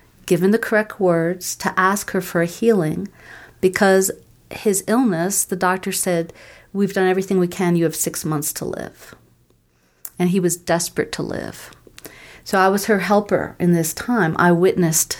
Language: English